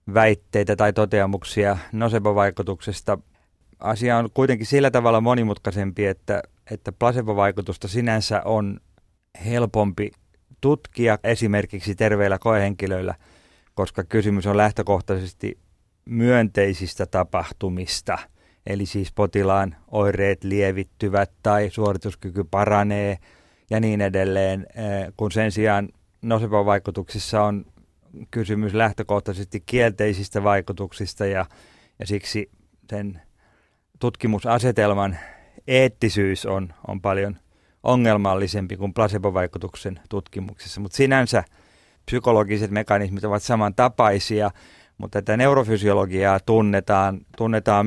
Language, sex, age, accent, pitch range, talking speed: Finnish, male, 30-49, native, 95-110 Hz, 90 wpm